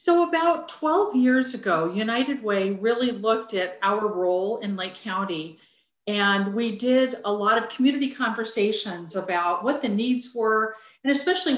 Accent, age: American, 50-69